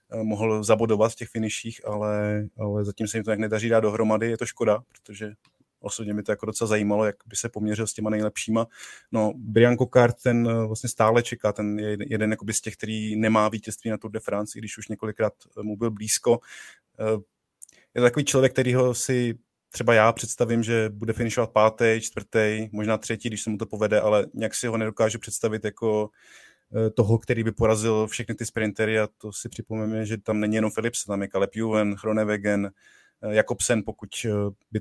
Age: 20-39